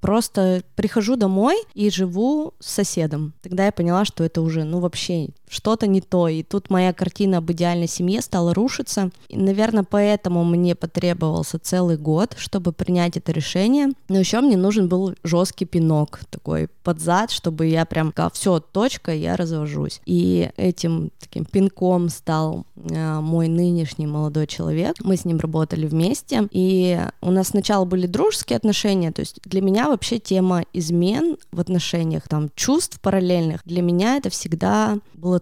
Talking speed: 160 wpm